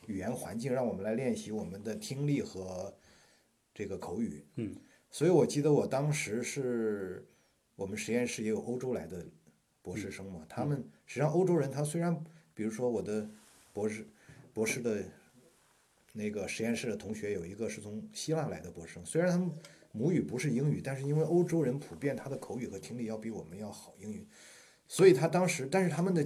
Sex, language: male, Chinese